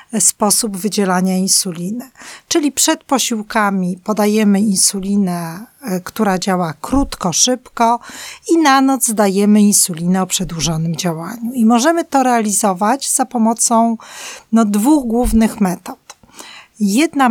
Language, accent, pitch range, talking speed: Polish, native, 195-235 Hz, 105 wpm